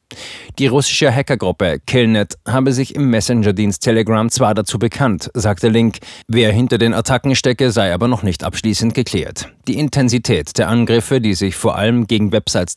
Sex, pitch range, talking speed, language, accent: male, 100-125 Hz, 165 wpm, German, German